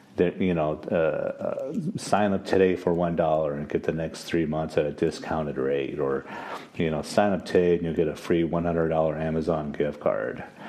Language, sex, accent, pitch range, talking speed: English, male, American, 75-85 Hz, 220 wpm